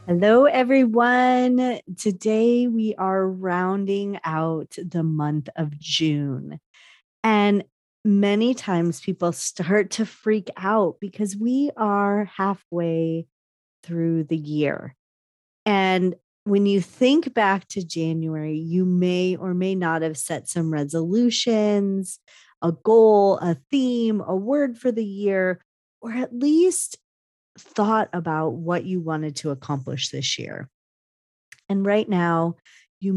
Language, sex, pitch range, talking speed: English, female, 160-210 Hz, 120 wpm